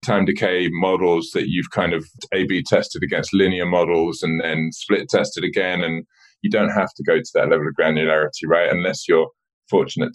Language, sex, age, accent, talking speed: English, male, 20-39, British, 185 wpm